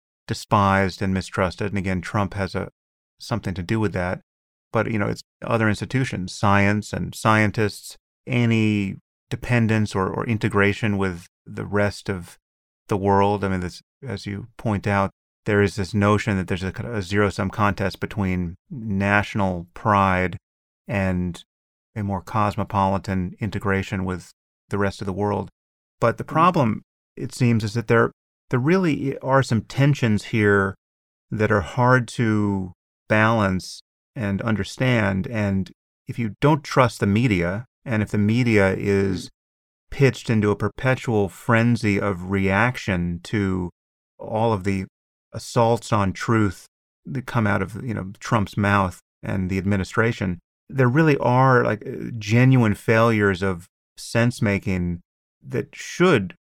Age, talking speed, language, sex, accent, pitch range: 30-49, 140 wpm, English, male, American, 95-115 Hz